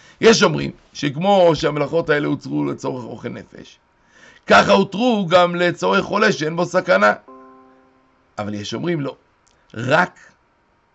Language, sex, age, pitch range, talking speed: Hebrew, male, 60-79, 125-170 Hz, 110 wpm